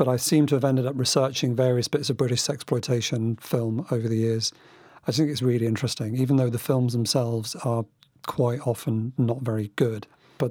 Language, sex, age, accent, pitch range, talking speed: English, male, 40-59, British, 120-140 Hz, 195 wpm